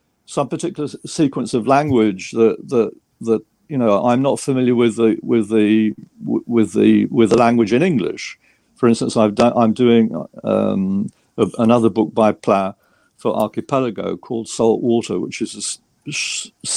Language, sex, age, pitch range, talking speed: English, male, 60-79, 110-130 Hz, 160 wpm